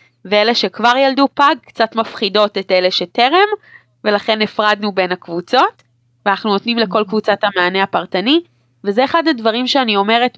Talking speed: 140 wpm